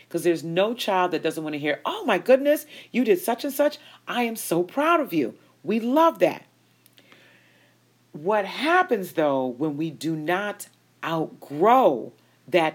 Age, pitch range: 40-59, 150-200 Hz